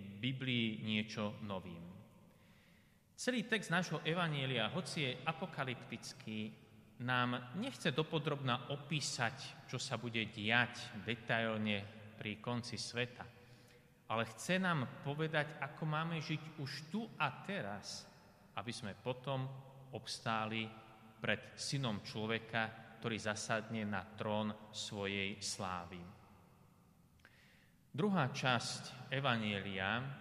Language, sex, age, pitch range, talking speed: Slovak, male, 30-49, 110-150 Hz, 95 wpm